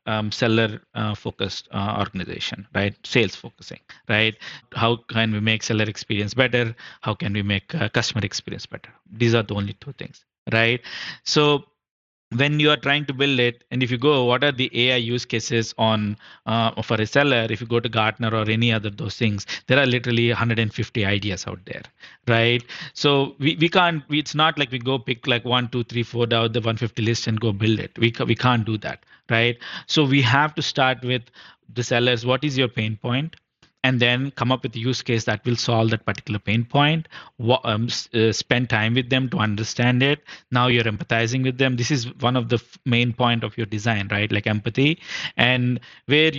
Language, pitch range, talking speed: English, 115-135 Hz, 210 wpm